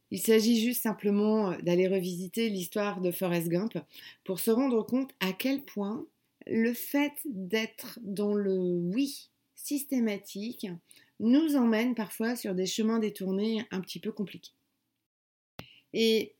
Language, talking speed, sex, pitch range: French, 130 wpm, female, 200-245 Hz